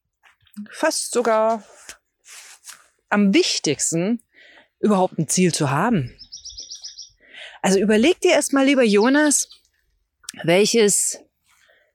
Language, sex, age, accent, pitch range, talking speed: German, female, 40-59, German, 165-220 Hz, 80 wpm